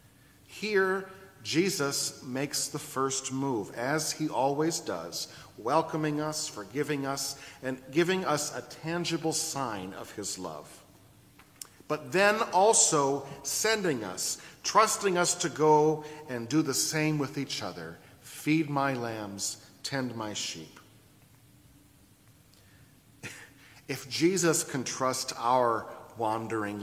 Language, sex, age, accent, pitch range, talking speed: English, male, 40-59, American, 120-155 Hz, 115 wpm